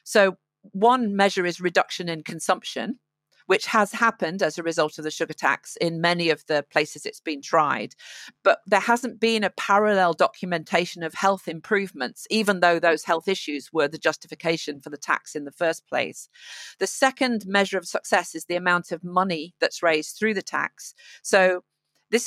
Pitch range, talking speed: 165-215 Hz, 180 wpm